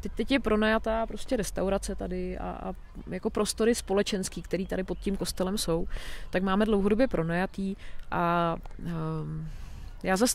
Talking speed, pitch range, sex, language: 150 wpm, 175-205 Hz, female, Czech